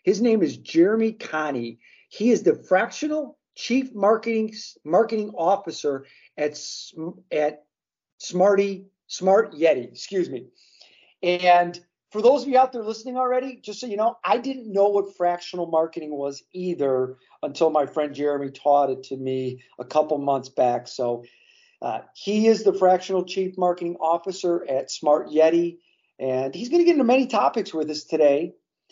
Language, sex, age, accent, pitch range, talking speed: English, male, 50-69, American, 150-210 Hz, 160 wpm